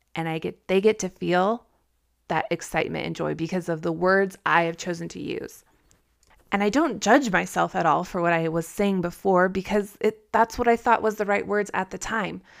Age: 20-39